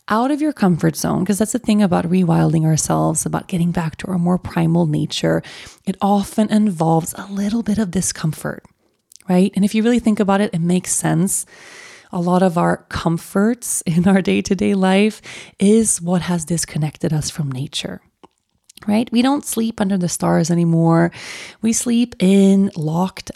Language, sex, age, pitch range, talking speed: English, female, 30-49, 170-215 Hz, 170 wpm